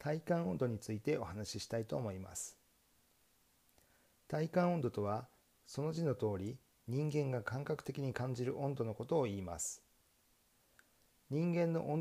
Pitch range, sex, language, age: 110-150 Hz, male, Japanese, 40-59